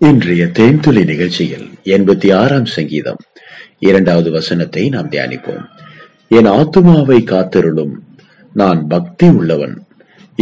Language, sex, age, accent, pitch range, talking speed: Tamil, male, 30-49, native, 95-155 Hz, 90 wpm